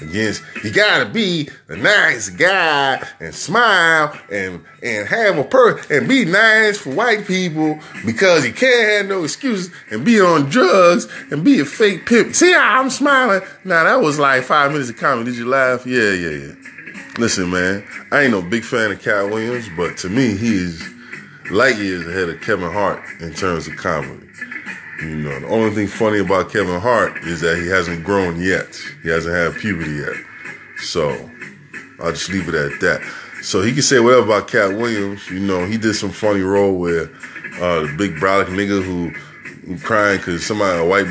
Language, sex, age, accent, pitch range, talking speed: English, male, 20-39, American, 95-145 Hz, 190 wpm